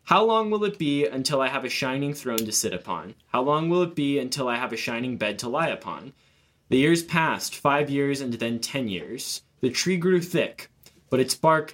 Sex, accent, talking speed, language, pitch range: male, American, 225 wpm, English, 125-155 Hz